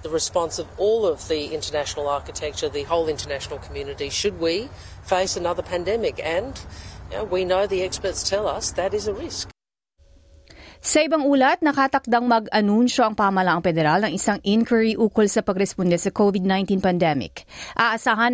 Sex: female